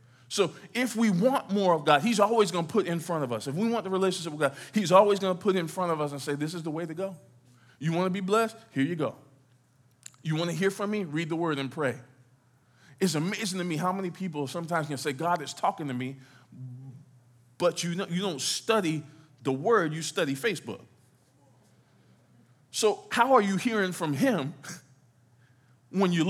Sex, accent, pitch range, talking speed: male, American, 135-190 Hz, 210 wpm